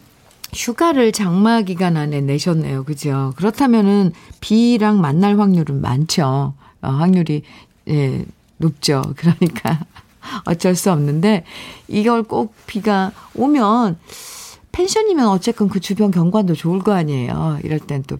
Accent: native